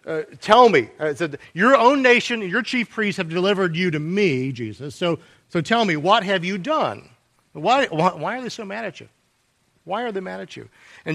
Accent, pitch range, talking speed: American, 135-190 Hz, 220 wpm